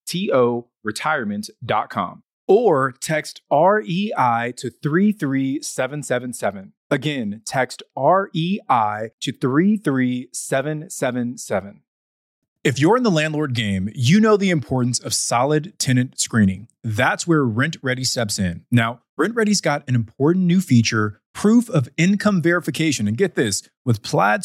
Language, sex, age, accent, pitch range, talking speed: English, male, 30-49, American, 115-170 Hz, 120 wpm